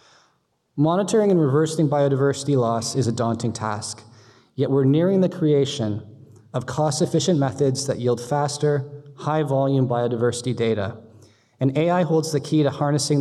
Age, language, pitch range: 20-39, English, 125-150 Hz